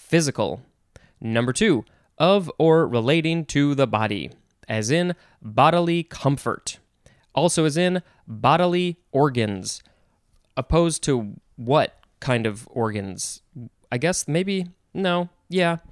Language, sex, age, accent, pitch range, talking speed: English, male, 20-39, American, 120-160 Hz, 110 wpm